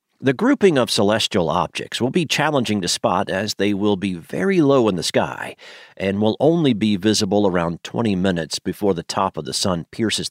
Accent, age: American, 50-69